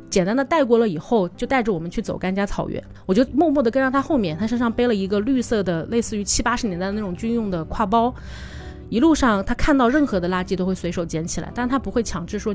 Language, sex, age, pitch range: Chinese, female, 30-49, 185-245 Hz